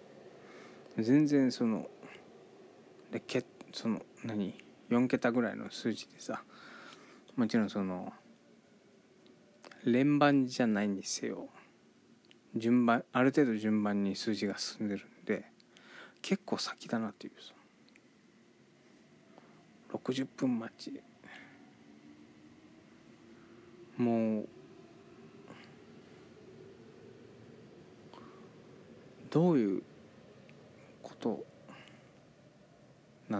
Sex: male